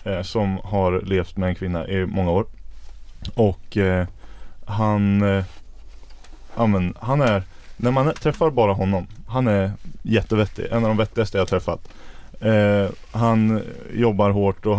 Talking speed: 150 wpm